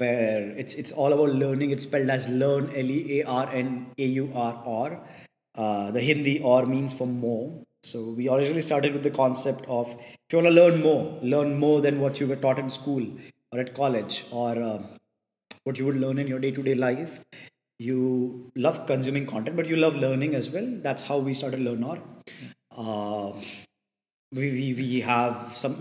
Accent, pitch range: Indian, 125-145 Hz